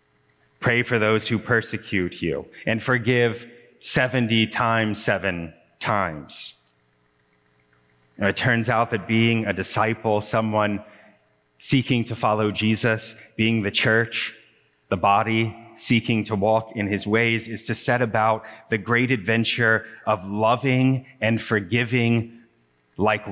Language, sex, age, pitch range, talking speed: English, male, 30-49, 100-115 Hz, 125 wpm